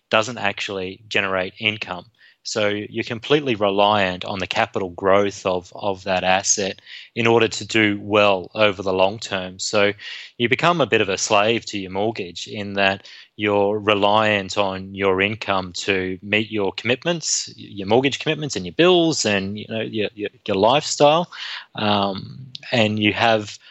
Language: English